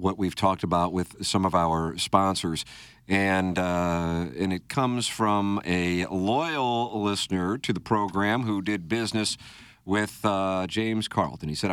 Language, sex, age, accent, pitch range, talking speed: English, male, 50-69, American, 95-120 Hz, 155 wpm